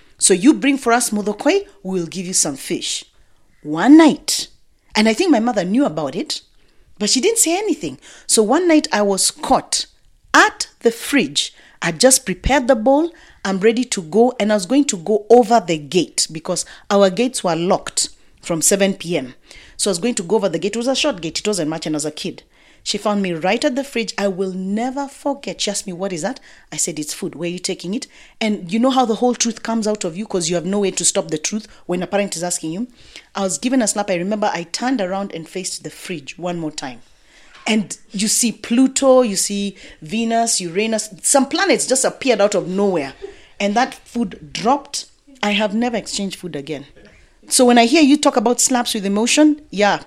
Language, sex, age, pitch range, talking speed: English, female, 40-59, 185-255 Hz, 225 wpm